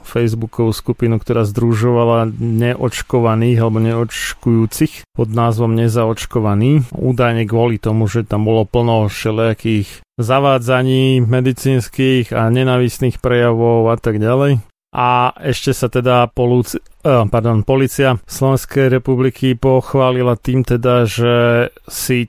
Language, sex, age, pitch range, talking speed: Slovak, male, 30-49, 115-130 Hz, 110 wpm